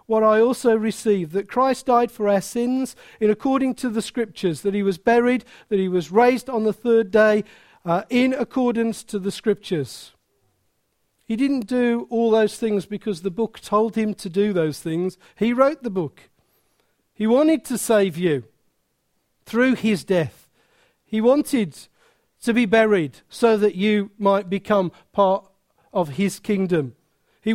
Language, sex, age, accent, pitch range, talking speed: English, male, 50-69, British, 200-250 Hz, 165 wpm